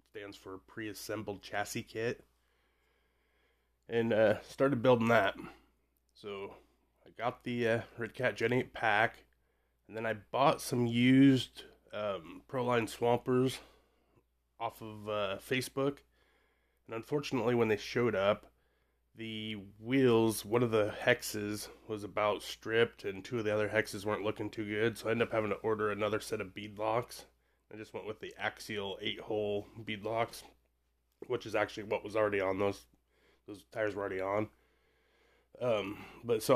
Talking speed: 155 wpm